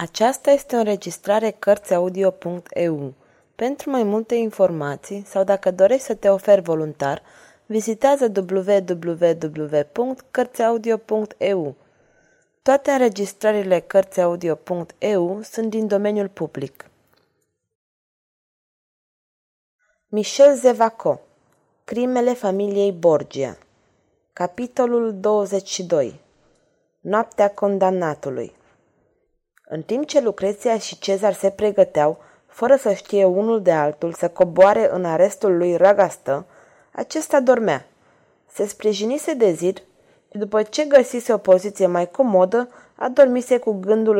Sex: female